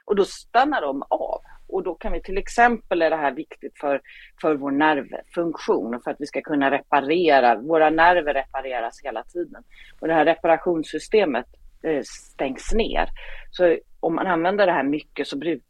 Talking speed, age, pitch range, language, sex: 180 wpm, 40-59, 145-190 Hz, English, female